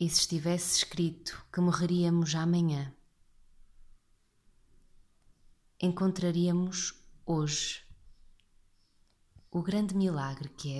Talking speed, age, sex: 80 wpm, 20-39, female